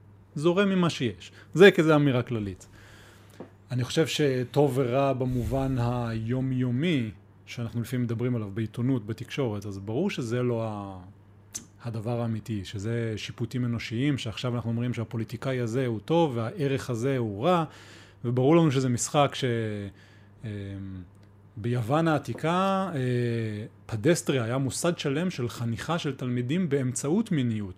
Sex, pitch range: male, 110-140 Hz